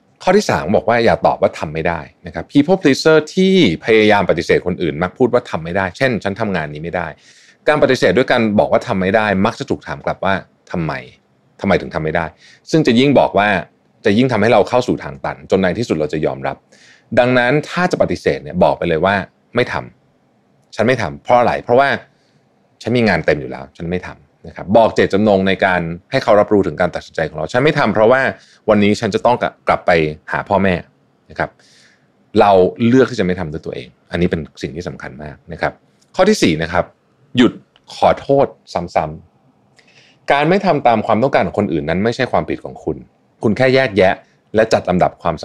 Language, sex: Thai, male